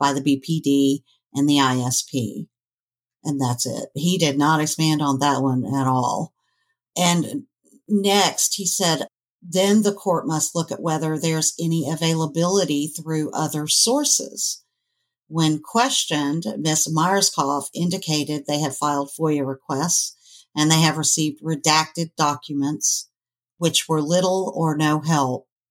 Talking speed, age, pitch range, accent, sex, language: 135 wpm, 50-69, 140-175 Hz, American, female, English